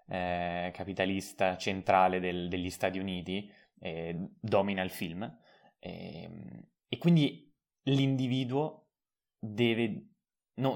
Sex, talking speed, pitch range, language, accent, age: male, 95 wpm, 95-115 Hz, Italian, native, 20-39